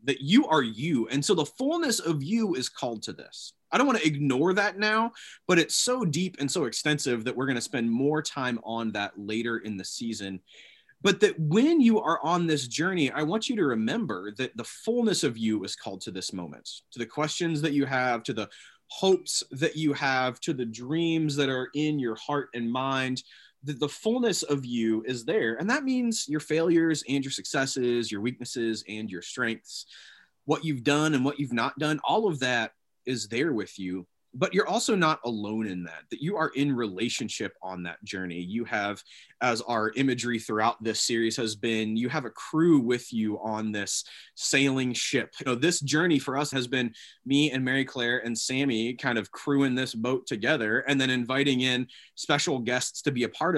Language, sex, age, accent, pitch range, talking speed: English, male, 20-39, American, 115-155 Hz, 205 wpm